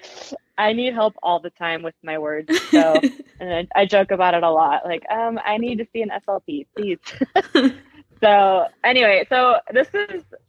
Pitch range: 165-215 Hz